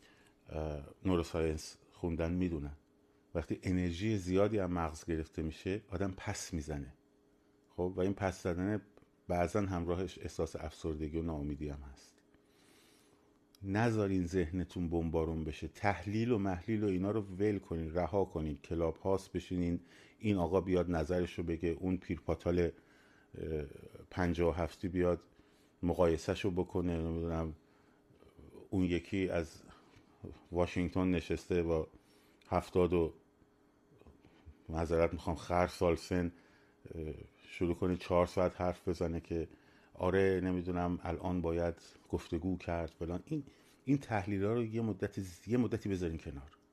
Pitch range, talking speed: 85-100 Hz, 120 wpm